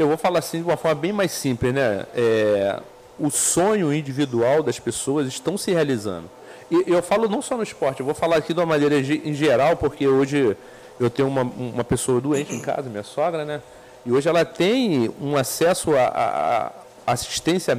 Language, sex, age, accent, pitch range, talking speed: Portuguese, male, 40-59, Brazilian, 125-160 Hz, 190 wpm